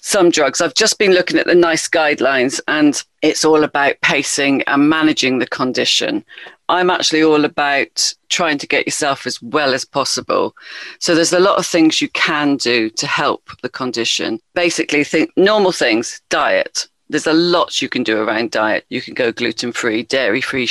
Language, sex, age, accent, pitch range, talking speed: English, female, 40-59, British, 135-180 Hz, 180 wpm